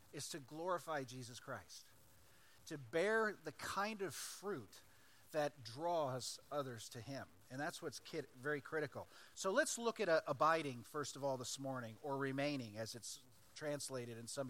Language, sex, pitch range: English, male, 135-190 Hz